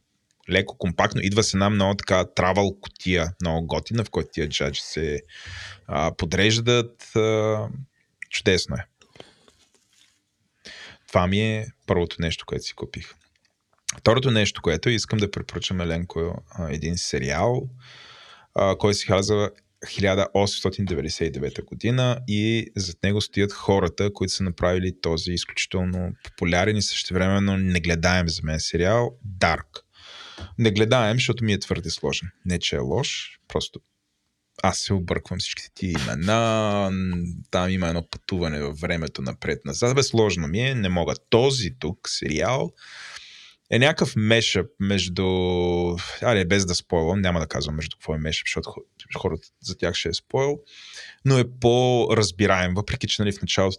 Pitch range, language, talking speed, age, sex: 85-110 Hz, Bulgarian, 140 wpm, 20-39, male